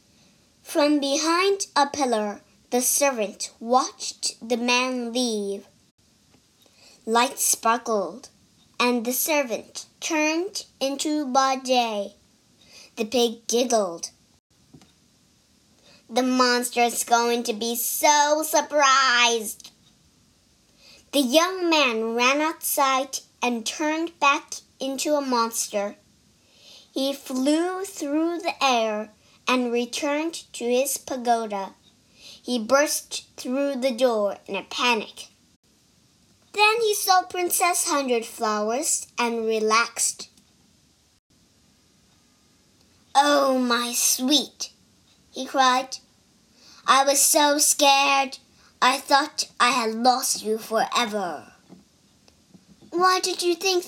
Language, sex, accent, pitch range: Chinese, male, American, 235-295 Hz